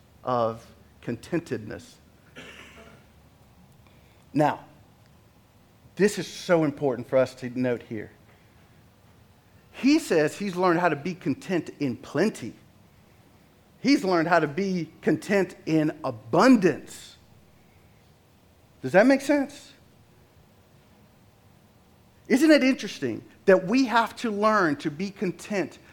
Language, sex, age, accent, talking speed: English, male, 50-69, American, 105 wpm